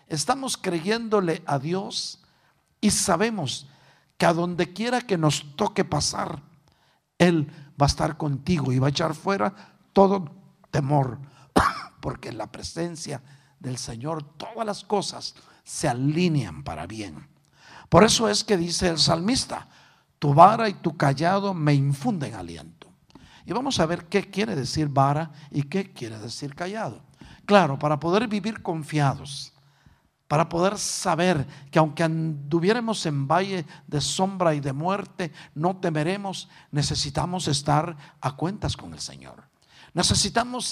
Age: 50-69